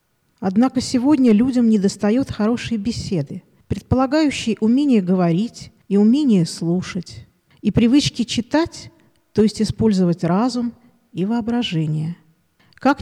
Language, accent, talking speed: Russian, native, 100 wpm